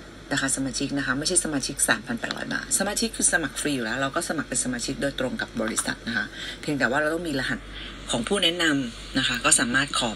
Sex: female